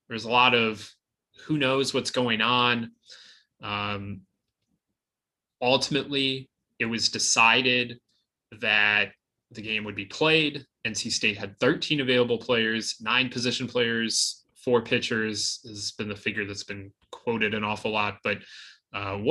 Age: 20-39